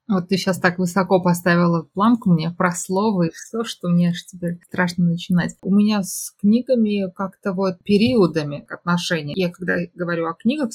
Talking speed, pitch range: 175 wpm, 175-200 Hz